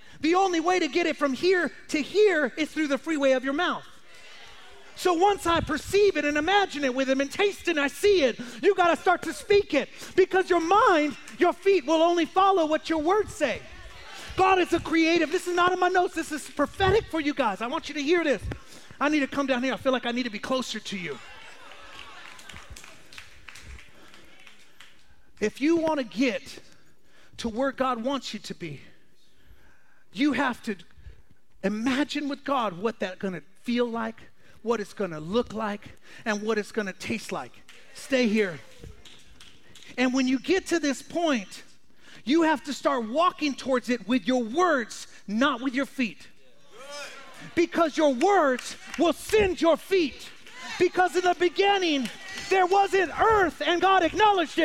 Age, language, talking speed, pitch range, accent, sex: 40-59, English, 185 wpm, 250-350 Hz, American, male